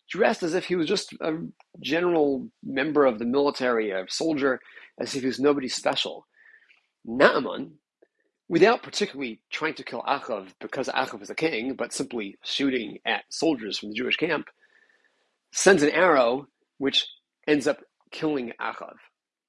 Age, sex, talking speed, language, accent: 40-59, male, 150 wpm, English, American